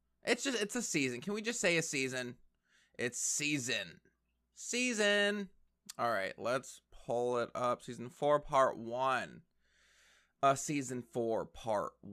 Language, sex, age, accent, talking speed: English, male, 20-39, American, 140 wpm